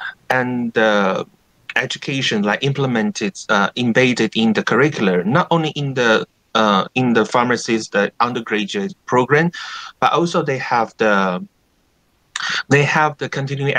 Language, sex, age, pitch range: Chinese, male, 30-49, 105-140 Hz